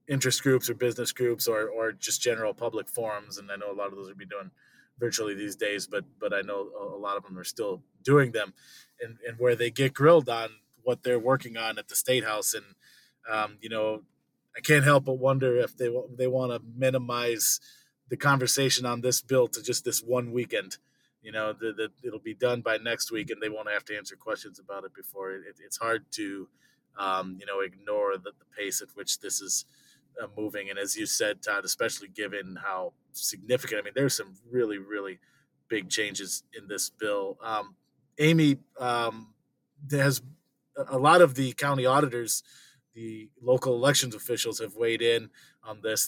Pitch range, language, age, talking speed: 115-140 Hz, English, 20-39, 195 wpm